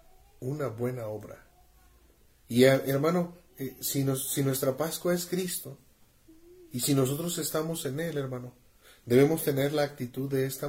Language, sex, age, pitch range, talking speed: Spanish, male, 40-59, 115-140 Hz, 140 wpm